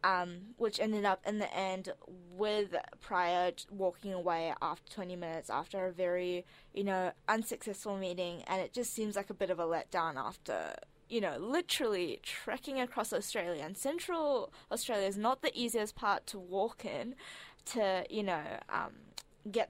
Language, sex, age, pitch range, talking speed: English, female, 10-29, 185-220 Hz, 165 wpm